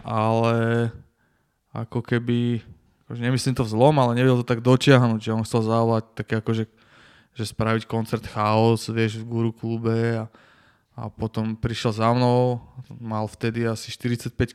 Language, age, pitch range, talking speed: Slovak, 20-39, 115-125 Hz, 155 wpm